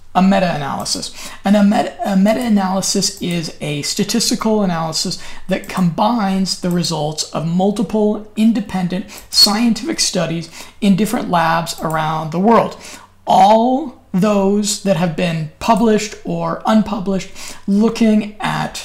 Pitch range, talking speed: 180-210 Hz, 115 wpm